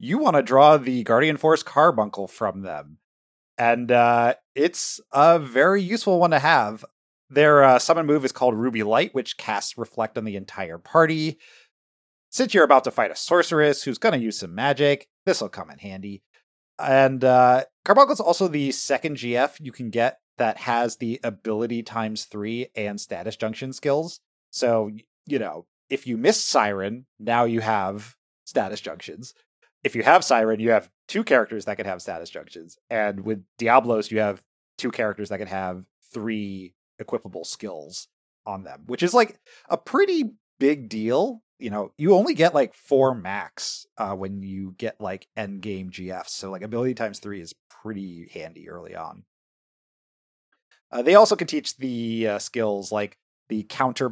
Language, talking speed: English, 175 wpm